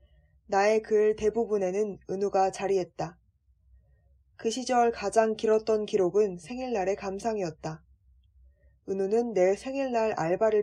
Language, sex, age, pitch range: Korean, female, 20-39, 175-230 Hz